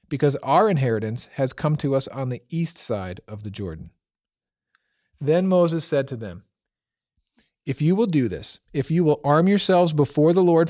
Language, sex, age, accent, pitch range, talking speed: English, male, 40-59, American, 125-165 Hz, 180 wpm